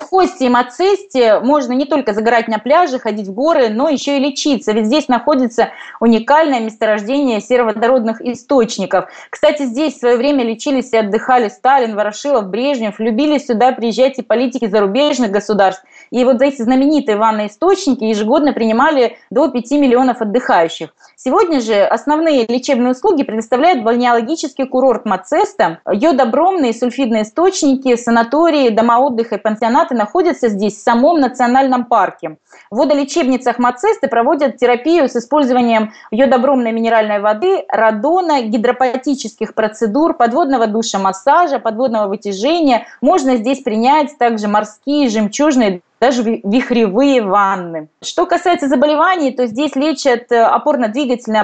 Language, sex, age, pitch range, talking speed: Russian, female, 20-39, 220-285 Hz, 130 wpm